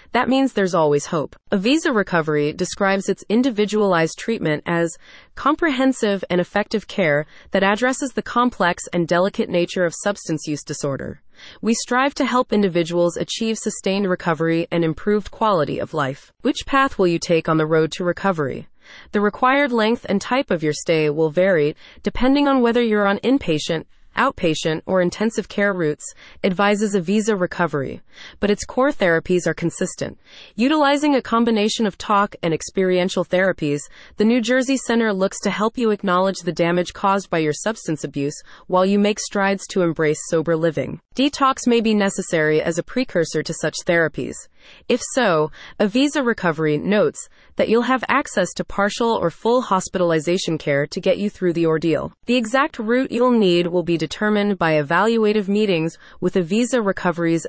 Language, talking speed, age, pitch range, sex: English, 165 wpm, 20-39, 165-225 Hz, female